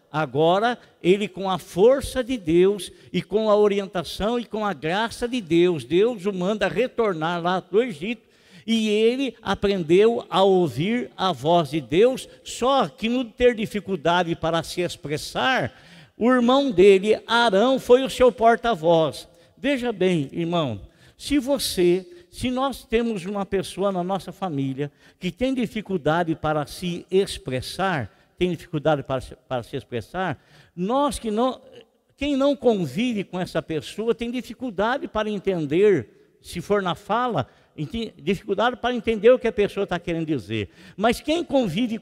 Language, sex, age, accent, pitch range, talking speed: Portuguese, male, 60-79, Brazilian, 175-240 Hz, 150 wpm